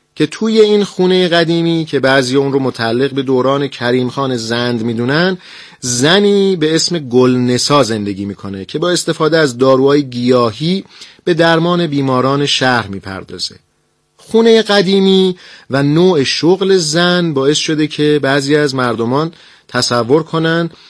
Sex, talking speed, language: male, 145 wpm, Persian